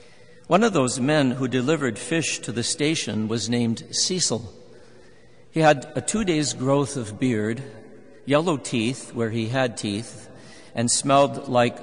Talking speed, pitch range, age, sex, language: 145 wpm, 115-145 Hz, 50-69, male, English